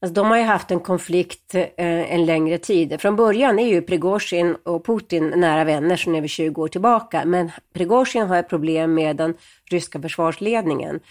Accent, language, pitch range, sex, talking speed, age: native, Swedish, 160-195 Hz, female, 190 wpm, 30-49